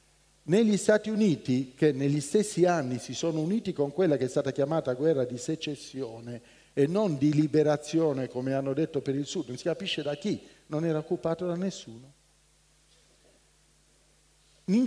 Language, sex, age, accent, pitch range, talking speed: Italian, male, 50-69, native, 135-185 Hz, 160 wpm